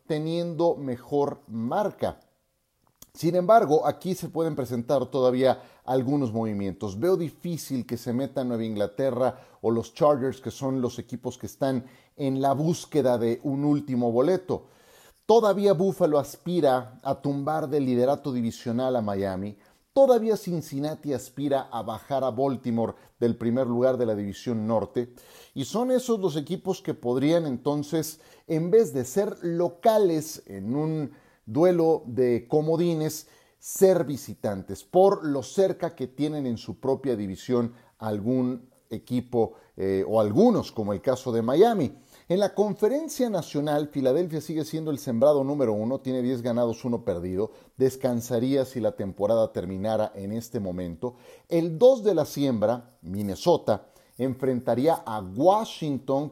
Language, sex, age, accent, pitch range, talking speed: Spanish, male, 40-59, Mexican, 120-155 Hz, 140 wpm